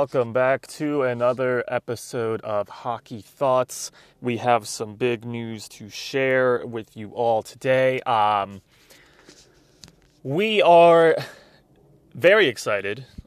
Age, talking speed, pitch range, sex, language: 20-39, 110 wpm, 105-135 Hz, male, English